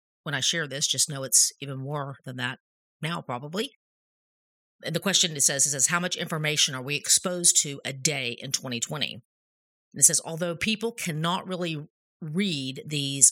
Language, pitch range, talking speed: English, 135-175 Hz, 185 wpm